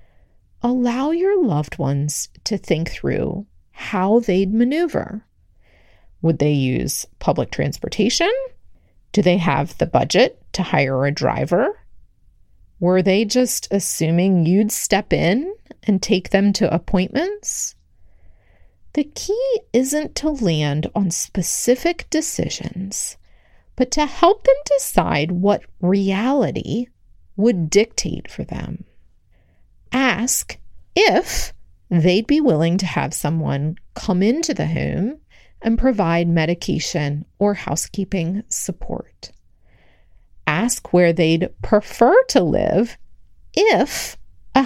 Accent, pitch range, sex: American, 150-235 Hz, female